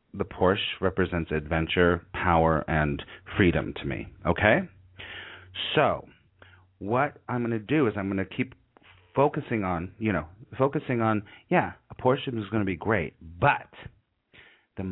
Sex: male